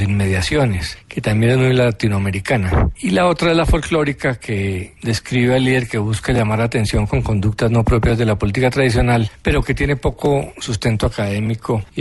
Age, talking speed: 40-59, 175 wpm